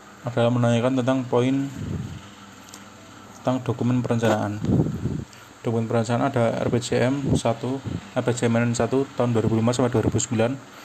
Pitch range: 110-125 Hz